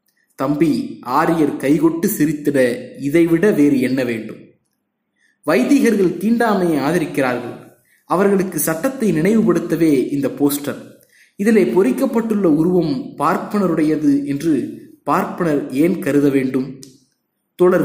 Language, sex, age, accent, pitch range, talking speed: Tamil, male, 20-39, native, 155-230 Hz, 85 wpm